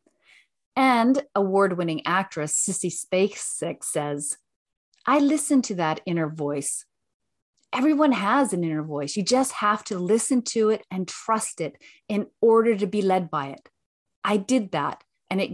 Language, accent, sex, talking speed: English, American, female, 150 wpm